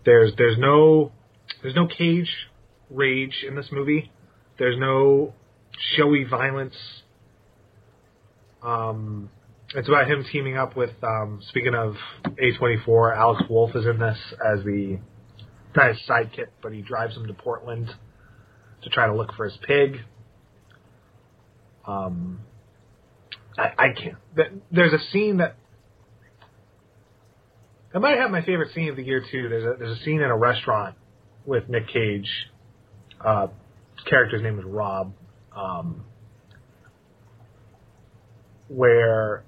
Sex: male